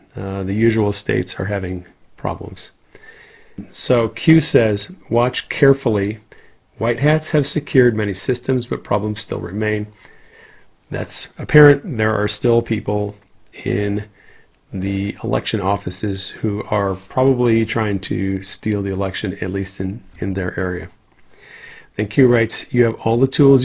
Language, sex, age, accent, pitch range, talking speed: English, male, 40-59, American, 100-125 Hz, 135 wpm